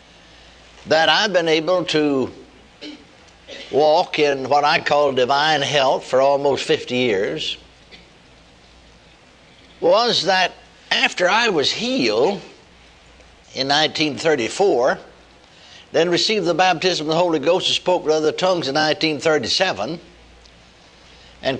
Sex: male